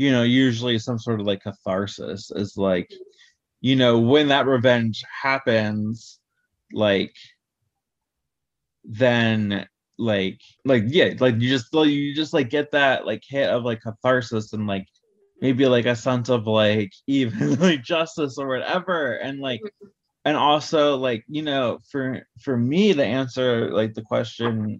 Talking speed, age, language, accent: 150 wpm, 20-39, English, American